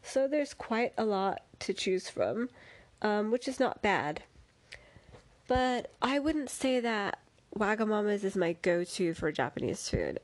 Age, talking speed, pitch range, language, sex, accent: 20-39, 150 wpm, 175-225 Hz, English, female, American